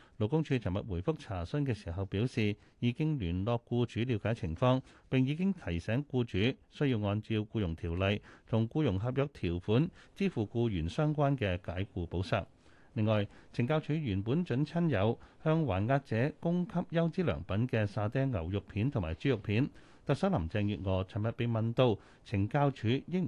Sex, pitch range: male, 100-135 Hz